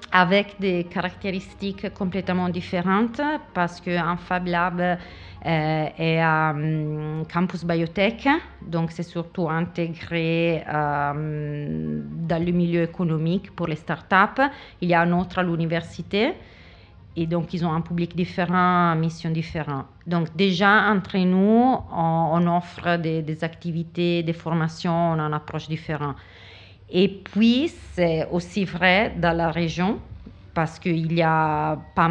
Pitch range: 160-180 Hz